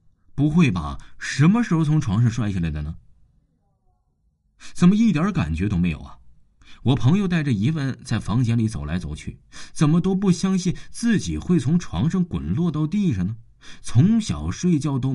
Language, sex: Chinese, male